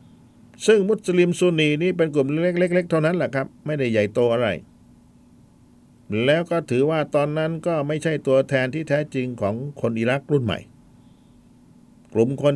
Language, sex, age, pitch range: Thai, male, 60-79, 120-165 Hz